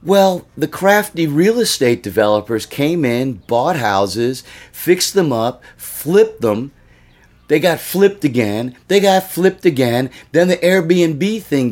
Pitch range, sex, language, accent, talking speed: 110-160 Hz, male, English, American, 140 wpm